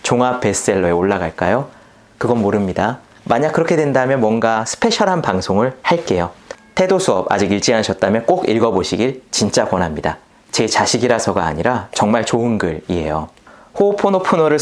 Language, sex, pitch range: Korean, male, 95-135 Hz